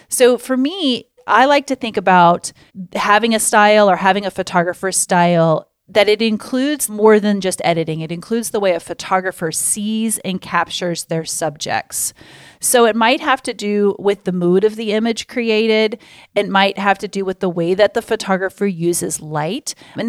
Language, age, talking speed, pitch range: English, 30-49, 180 wpm, 180-220 Hz